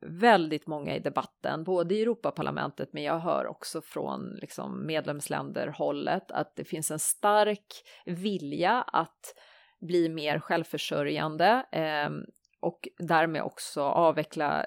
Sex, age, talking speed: female, 30-49, 115 wpm